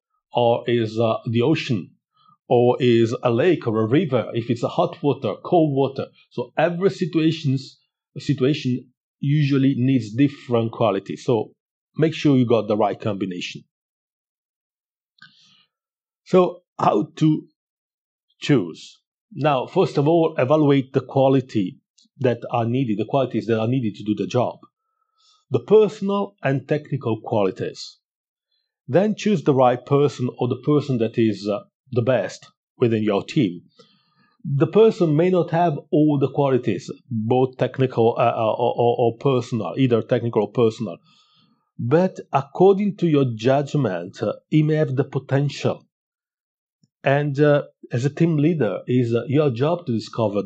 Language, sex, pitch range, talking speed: English, male, 120-160 Hz, 145 wpm